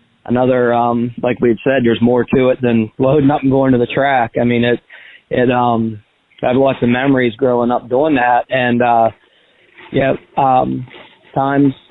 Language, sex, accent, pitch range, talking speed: English, male, American, 120-140 Hz, 175 wpm